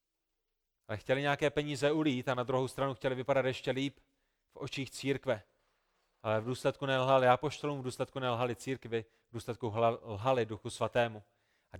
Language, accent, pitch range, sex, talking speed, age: Czech, native, 130-170 Hz, male, 160 wpm, 30-49